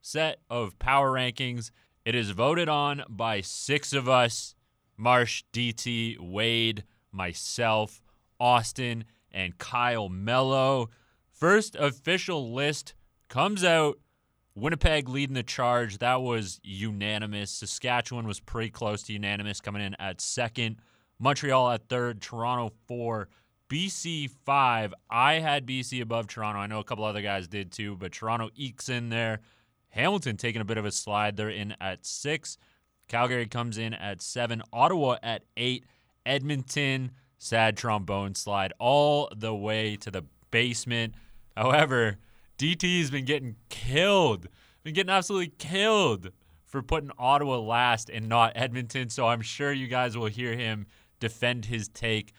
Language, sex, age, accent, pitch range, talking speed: English, male, 30-49, American, 110-130 Hz, 140 wpm